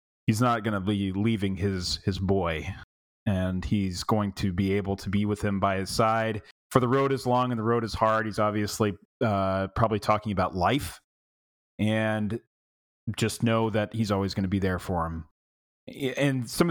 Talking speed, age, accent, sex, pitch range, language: 190 wpm, 30-49, American, male, 95-115 Hz, English